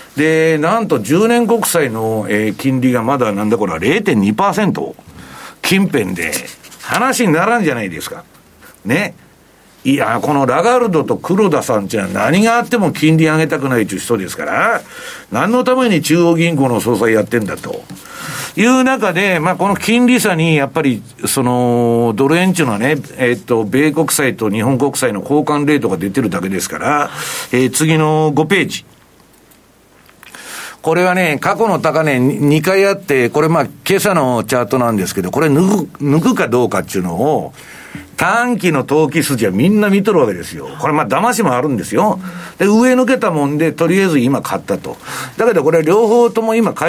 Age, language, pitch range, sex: 60-79, Japanese, 120-185 Hz, male